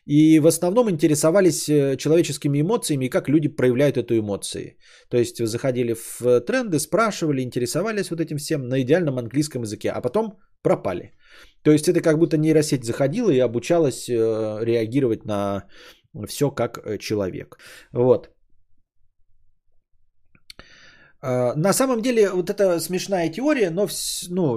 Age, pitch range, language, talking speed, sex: 20-39, 125-170 Hz, Bulgarian, 130 wpm, male